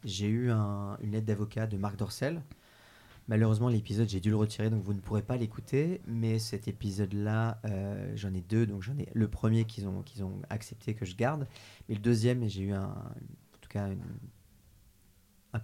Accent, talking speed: French, 200 wpm